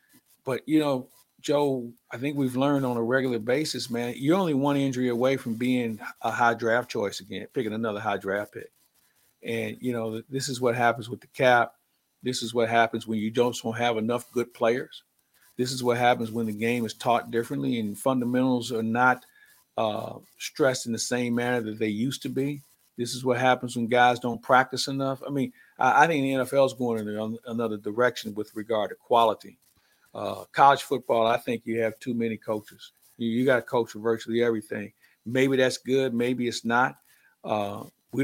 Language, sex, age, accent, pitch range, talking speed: English, male, 50-69, American, 115-130 Hz, 195 wpm